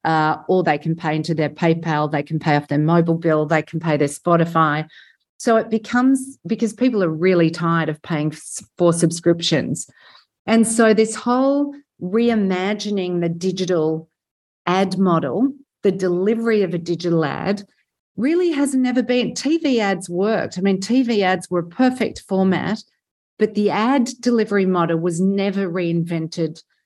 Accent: Australian